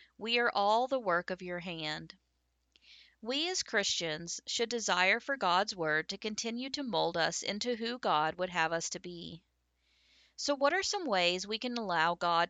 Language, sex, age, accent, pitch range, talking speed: English, female, 40-59, American, 165-230 Hz, 180 wpm